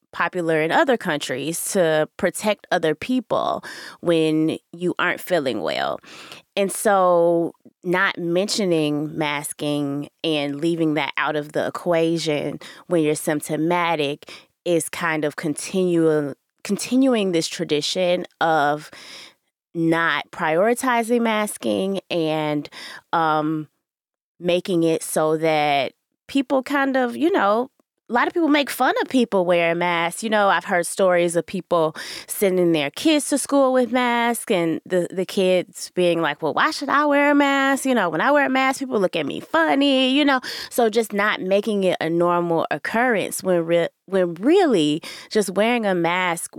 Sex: female